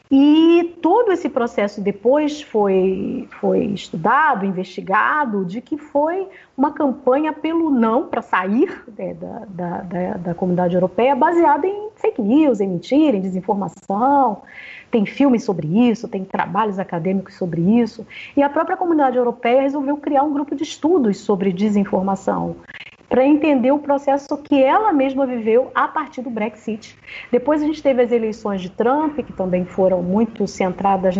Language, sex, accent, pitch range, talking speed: Portuguese, female, Brazilian, 200-290 Hz, 150 wpm